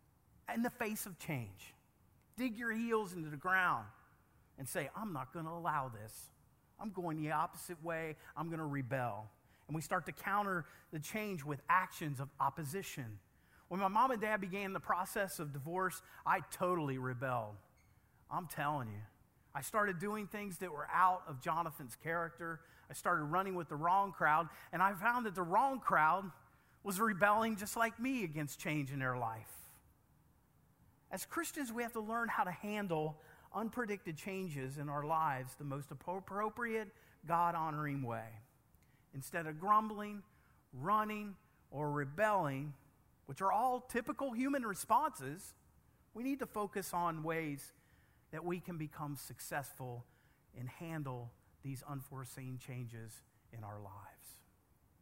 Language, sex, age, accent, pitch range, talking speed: English, male, 40-59, American, 135-200 Hz, 150 wpm